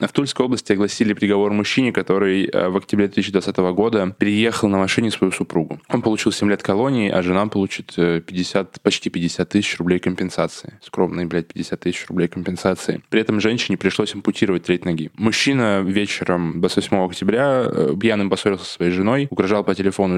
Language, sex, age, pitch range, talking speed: Russian, male, 10-29, 95-110 Hz, 165 wpm